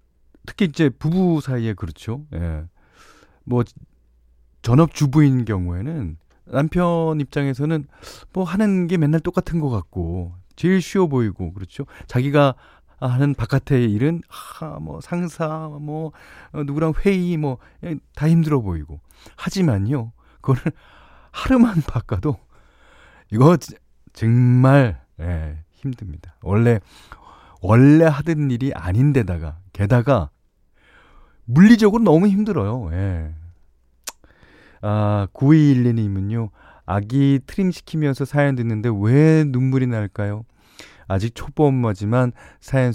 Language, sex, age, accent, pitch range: Korean, male, 40-59, native, 90-150 Hz